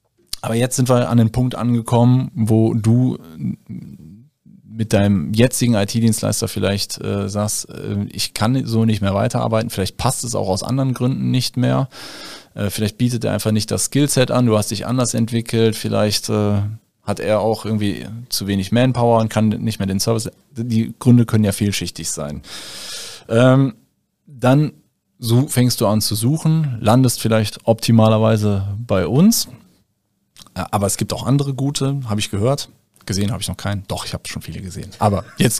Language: German